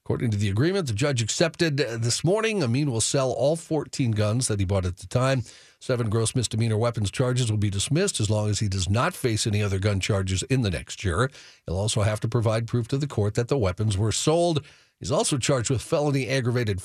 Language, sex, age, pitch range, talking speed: English, male, 50-69, 105-140 Hz, 230 wpm